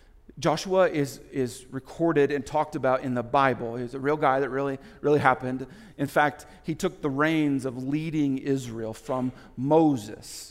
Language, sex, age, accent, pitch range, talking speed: English, male, 40-59, American, 135-205 Hz, 165 wpm